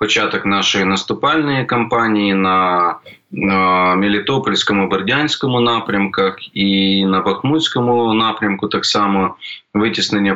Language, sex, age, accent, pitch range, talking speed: Ukrainian, male, 20-39, native, 95-115 Hz, 95 wpm